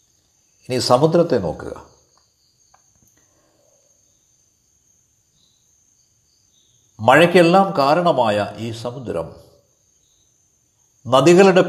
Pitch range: 110-160 Hz